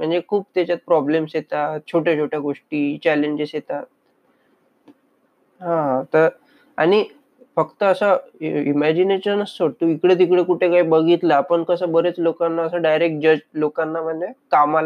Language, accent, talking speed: Hindi, native, 95 wpm